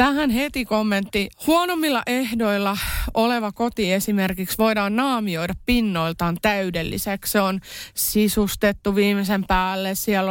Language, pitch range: Finnish, 195-245 Hz